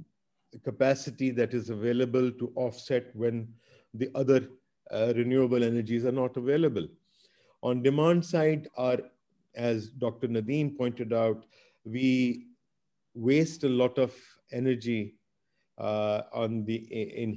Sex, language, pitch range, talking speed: male, English, 115-135 Hz, 120 wpm